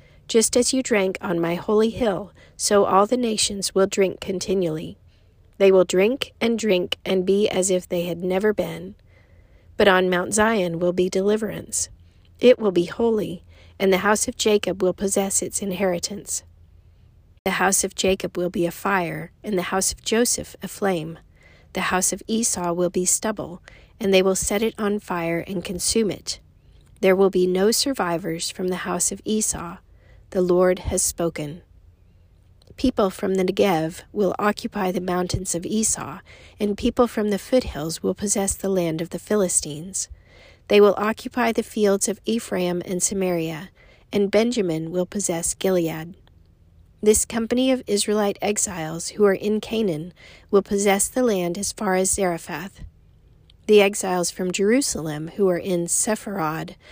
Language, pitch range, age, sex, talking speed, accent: English, 170-205 Hz, 40-59, female, 165 wpm, American